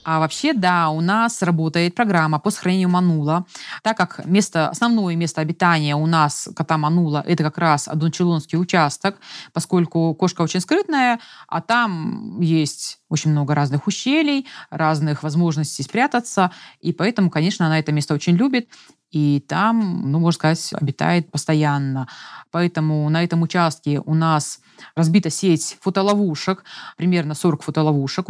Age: 20-39